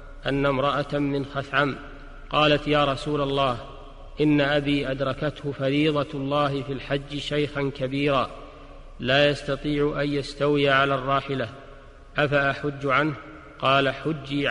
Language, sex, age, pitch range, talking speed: Arabic, male, 50-69, 140-145 Hz, 110 wpm